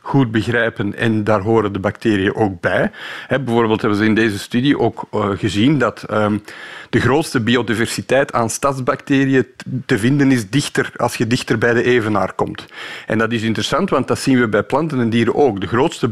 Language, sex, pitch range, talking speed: Dutch, male, 110-140 Hz, 190 wpm